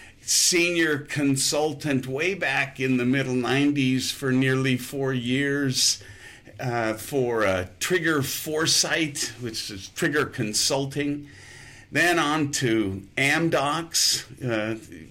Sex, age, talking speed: male, 50-69, 105 wpm